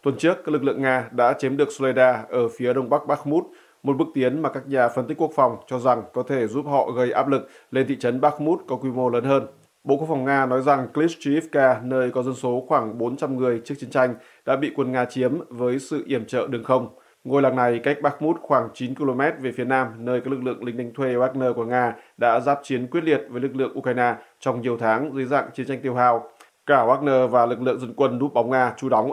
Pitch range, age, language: 120-140 Hz, 20-39, Vietnamese